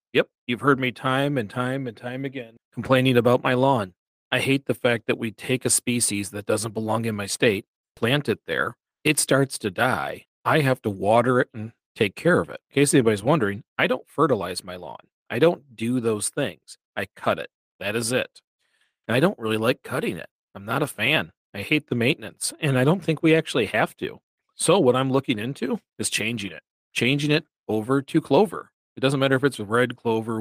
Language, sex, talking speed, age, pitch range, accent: English, male, 215 wpm, 40-59, 115-140 Hz, American